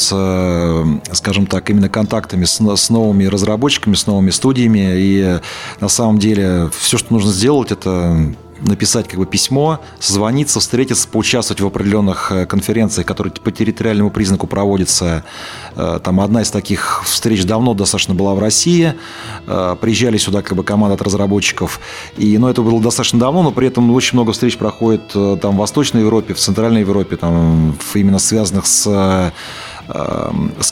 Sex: male